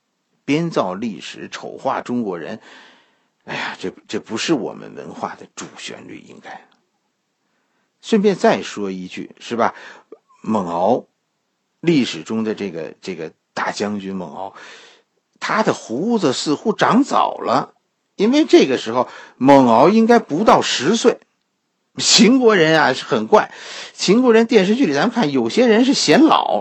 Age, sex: 50-69, male